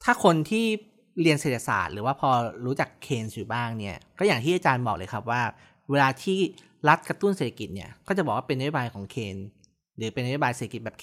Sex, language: male, Thai